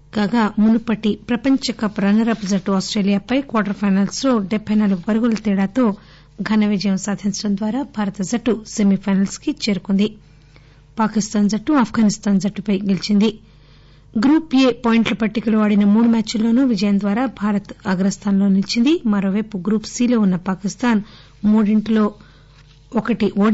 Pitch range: 195-220 Hz